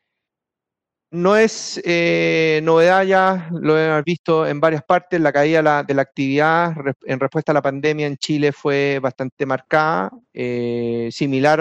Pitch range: 140-165 Hz